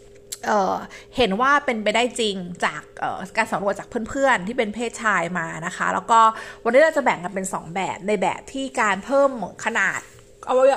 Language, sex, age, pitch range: Thai, female, 30-49, 195-265 Hz